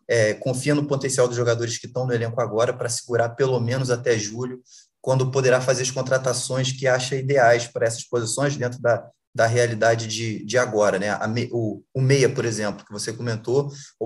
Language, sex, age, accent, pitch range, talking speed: Portuguese, male, 20-39, Brazilian, 115-135 Hz, 200 wpm